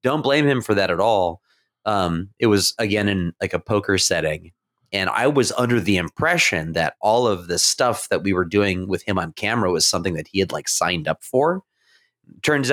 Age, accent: 30-49, American